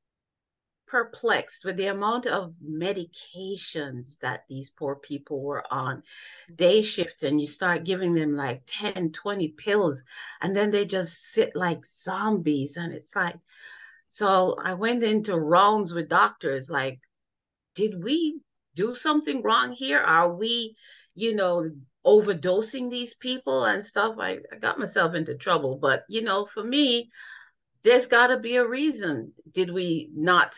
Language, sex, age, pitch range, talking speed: English, female, 40-59, 150-220 Hz, 150 wpm